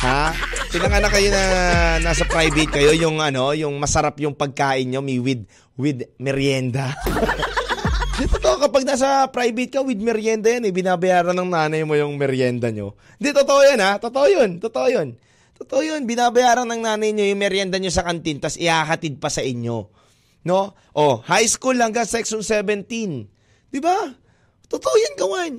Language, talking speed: Filipino, 175 wpm